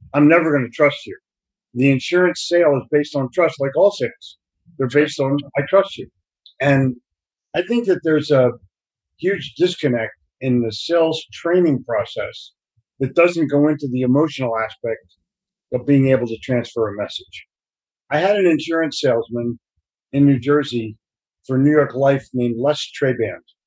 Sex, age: male, 50-69